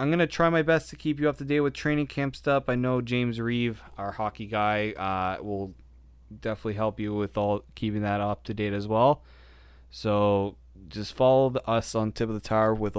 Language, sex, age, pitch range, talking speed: English, male, 20-39, 95-125 Hz, 215 wpm